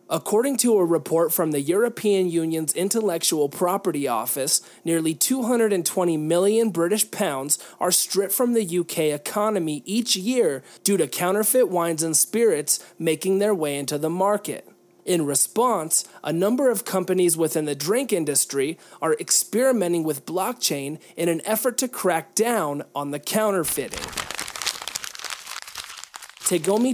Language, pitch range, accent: English, 155-215 Hz, American